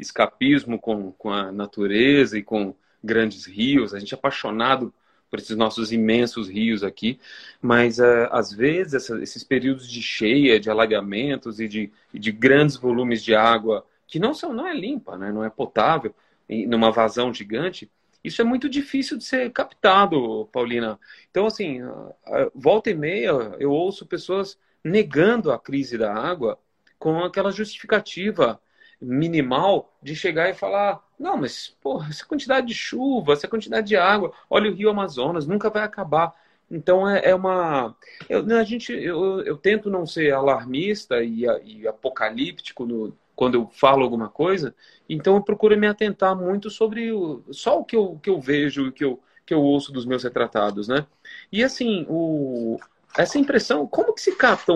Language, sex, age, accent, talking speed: Portuguese, male, 30-49, Brazilian, 170 wpm